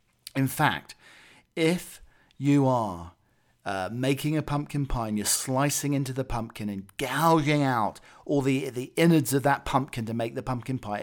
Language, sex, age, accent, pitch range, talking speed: English, male, 40-59, British, 110-140 Hz, 170 wpm